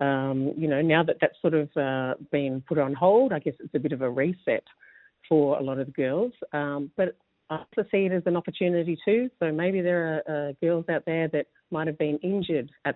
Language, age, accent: English, 40-59, Australian